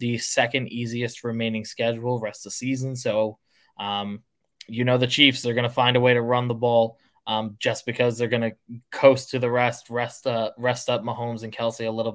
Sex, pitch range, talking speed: male, 110-125 Hz, 215 wpm